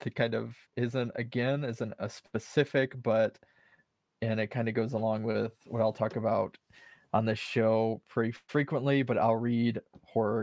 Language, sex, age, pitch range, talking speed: English, male, 20-39, 110-125 Hz, 165 wpm